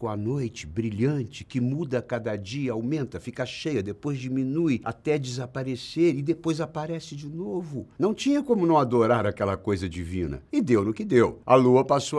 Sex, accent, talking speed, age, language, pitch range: male, Brazilian, 170 wpm, 60-79, Portuguese, 105-145 Hz